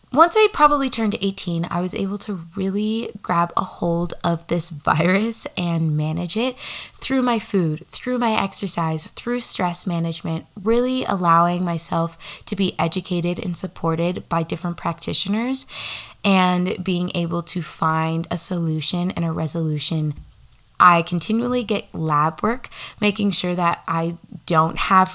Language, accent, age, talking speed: English, American, 20-39, 145 wpm